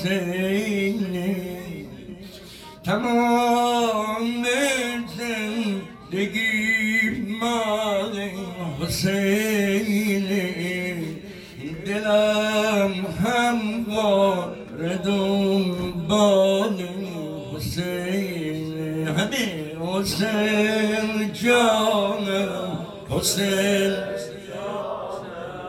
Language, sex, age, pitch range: Persian, male, 60-79, 180-215 Hz